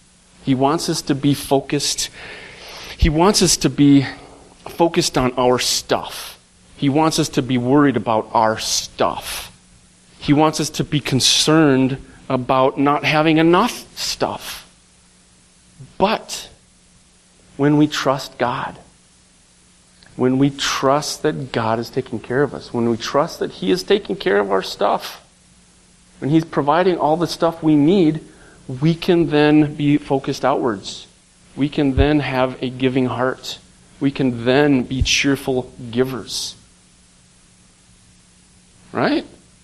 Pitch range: 115-150 Hz